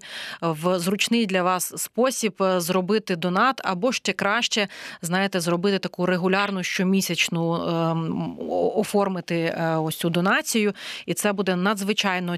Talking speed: 110 wpm